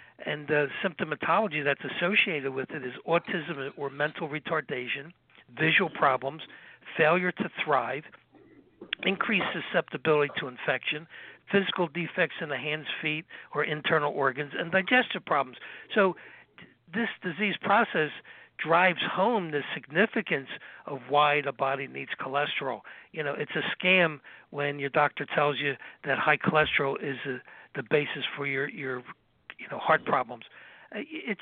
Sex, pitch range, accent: male, 145-175 Hz, American